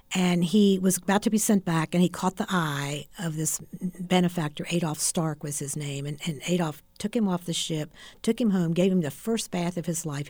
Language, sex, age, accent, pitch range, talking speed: English, female, 60-79, American, 165-190 Hz, 235 wpm